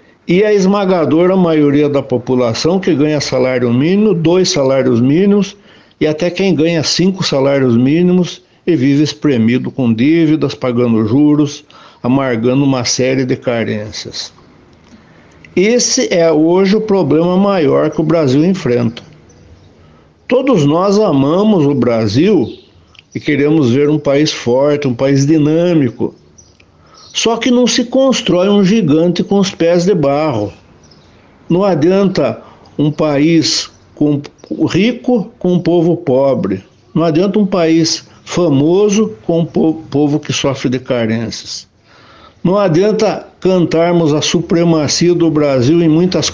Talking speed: 130 wpm